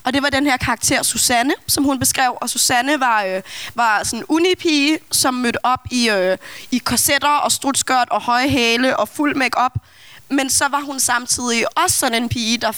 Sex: female